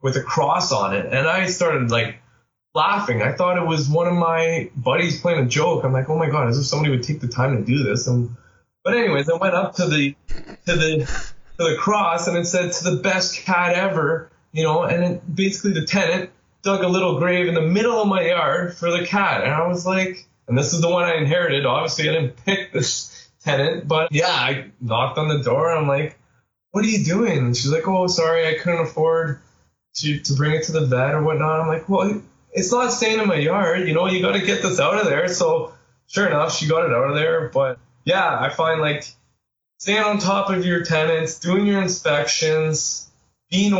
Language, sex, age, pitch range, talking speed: English, male, 20-39, 135-180 Hz, 230 wpm